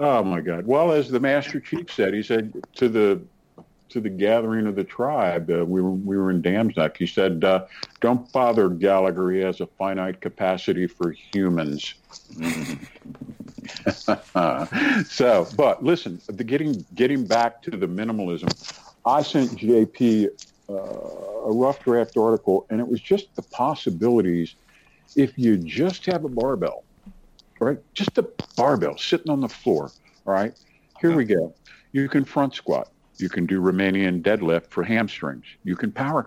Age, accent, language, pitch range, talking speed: 50-69, American, English, 95-125 Hz, 160 wpm